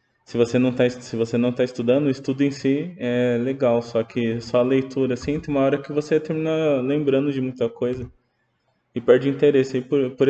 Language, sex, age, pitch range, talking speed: Portuguese, male, 20-39, 115-145 Hz, 190 wpm